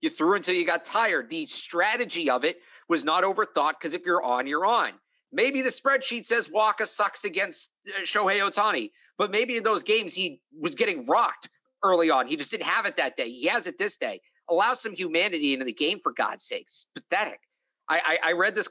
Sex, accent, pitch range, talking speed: male, American, 160-215 Hz, 210 wpm